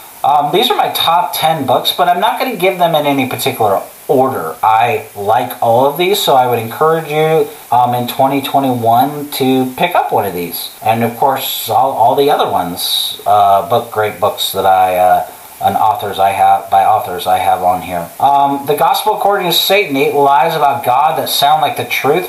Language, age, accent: English, 40-59, American